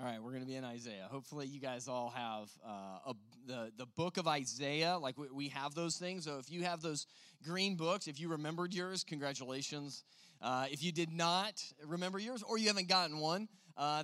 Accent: American